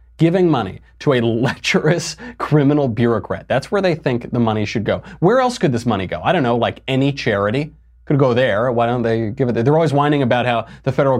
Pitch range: 115-155 Hz